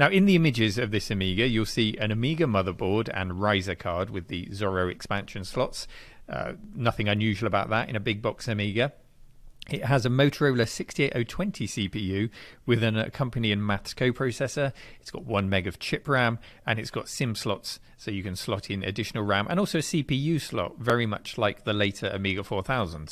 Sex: male